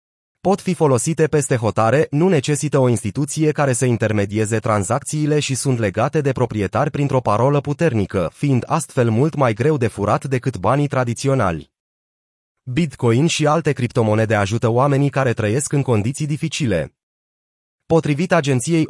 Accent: native